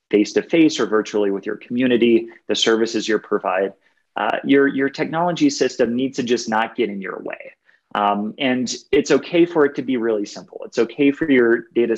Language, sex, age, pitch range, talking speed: English, male, 30-49, 105-135 Hz, 190 wpm